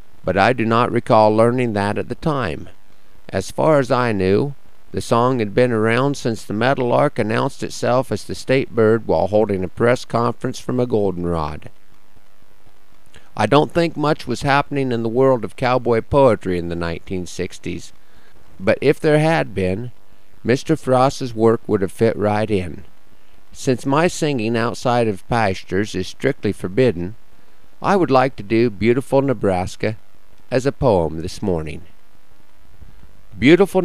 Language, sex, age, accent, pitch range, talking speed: English, male, 50-69, American, 100-130 Hz, 155 wpm